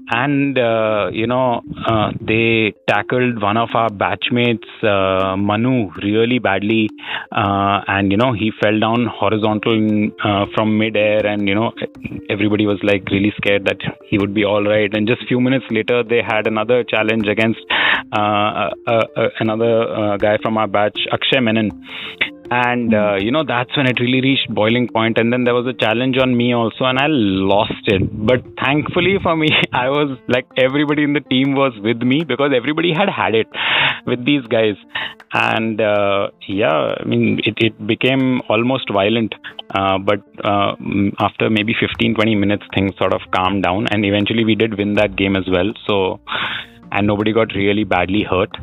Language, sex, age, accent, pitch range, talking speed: English, male, 30-49, Indian, 105-120 Hz, 180 wpm